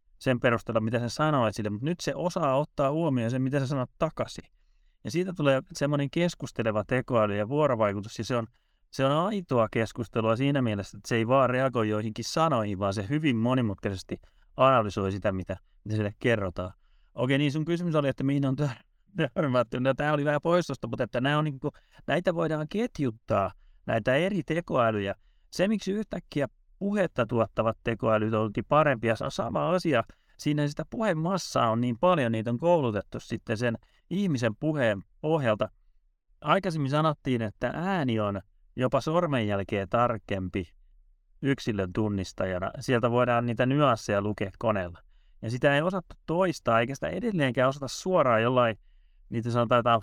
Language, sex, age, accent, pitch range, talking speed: Finnish, male, 30-49, native, 110-145 Hz, 155 wpm